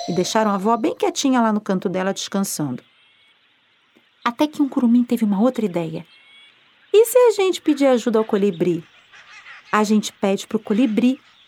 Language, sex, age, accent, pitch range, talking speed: Portuguese, female, 40-59, Brazilian, 210-310 Hz, 175 wpm